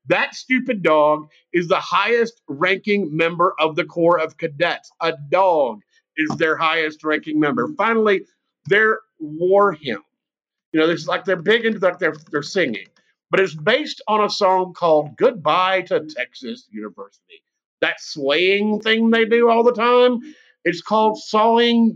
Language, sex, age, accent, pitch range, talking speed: English, male, 50-69, American, 160-220 Hz, 160 wpm